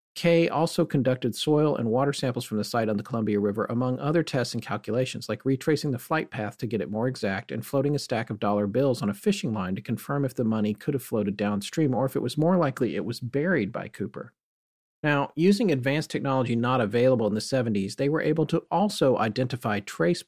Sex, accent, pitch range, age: male, American, 110-155 Hz, 40-59